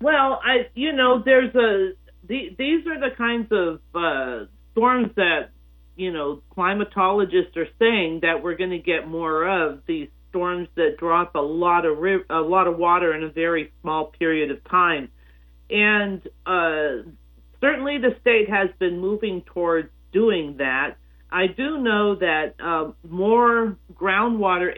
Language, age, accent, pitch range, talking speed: English, 50-69, American, 160-205 Hz, 155 wpm